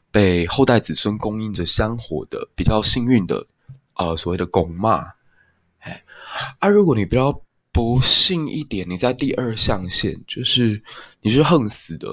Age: 20-39